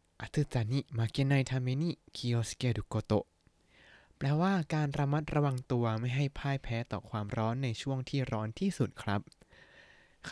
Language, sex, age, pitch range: Thai, male, 20-39, 110-135 Hz